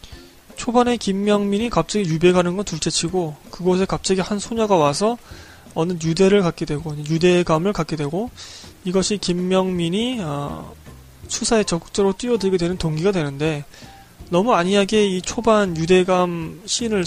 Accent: native